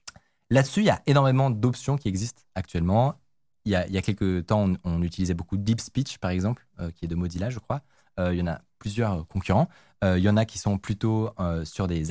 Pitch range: 95-130 Hz